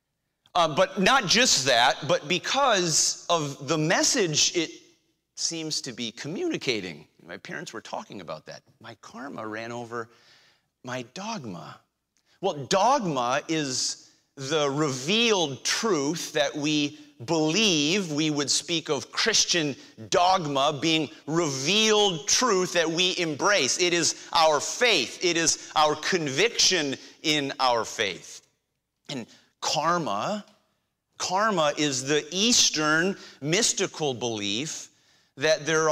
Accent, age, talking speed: American, 30-49, 115 wpm